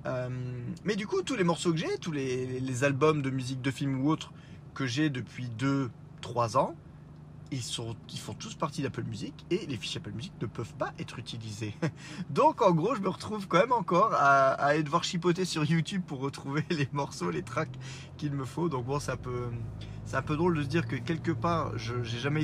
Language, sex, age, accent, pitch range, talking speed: French, male, 30-49, French, 125-155 Hz, 225 wpm